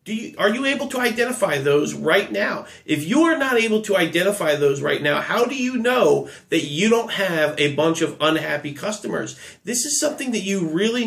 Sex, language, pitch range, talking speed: male, English, 160-225 Hz, 200 wpm